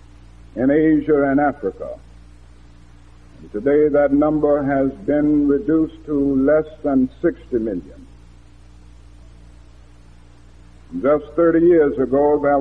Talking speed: 100 wpm